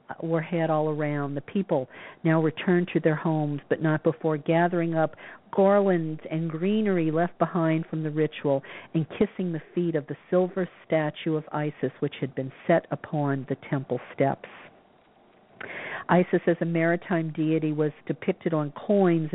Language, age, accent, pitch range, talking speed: English, 50-69, American, 155-180 Hz, 160 wpm